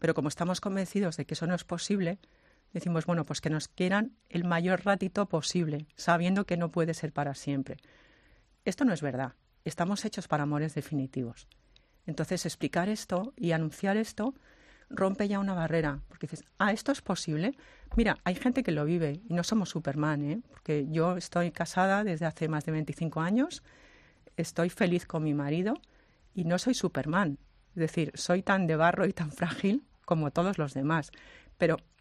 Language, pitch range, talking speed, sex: Spanish, 155-195 Hz, 180 wpm, female